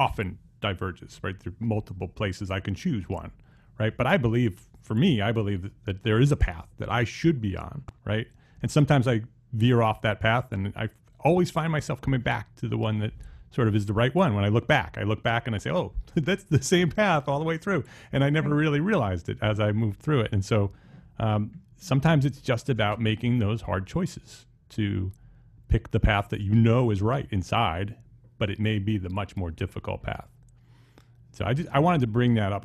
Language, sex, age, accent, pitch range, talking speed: English, male, 40-59, American, 100-125 Hz, 225 wpm